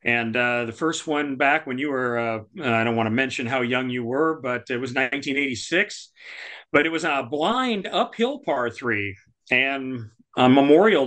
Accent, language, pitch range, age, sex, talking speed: American, English, 120-150 Hz, 40-59, male, 185 wpm